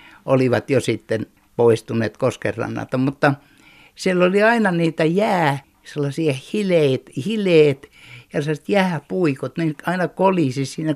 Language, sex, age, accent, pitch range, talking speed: Finnish, male, 60-79, native, 125-170 Hz, 110 wpm